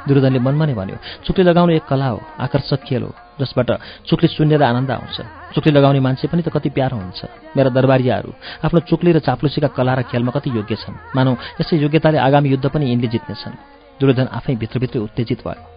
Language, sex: English, male